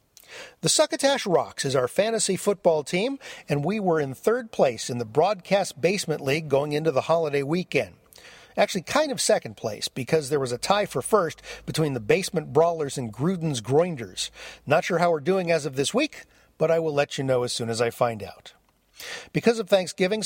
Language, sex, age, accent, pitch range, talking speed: English, male, 50-69, American, 140-200 Hz, 200 wpm